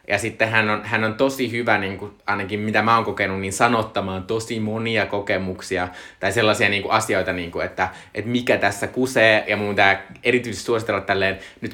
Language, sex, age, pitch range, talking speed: Finnish, male, 20-39, 95-115 Hz, 200 wpm